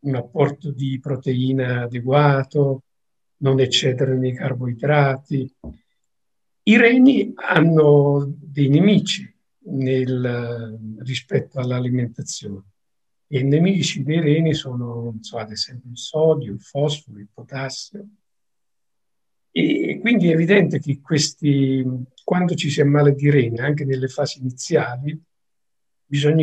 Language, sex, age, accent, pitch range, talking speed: Italian, male, 50-69, native, 125-150 Hz, 115 wpm